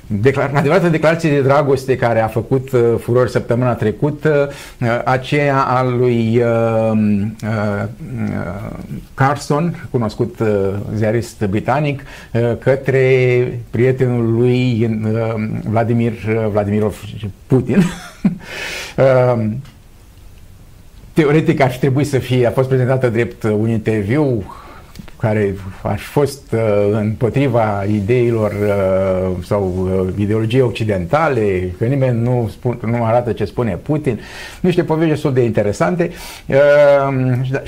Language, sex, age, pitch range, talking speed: Romanian, male, 50-69, 110-140 Hz, 115 wpm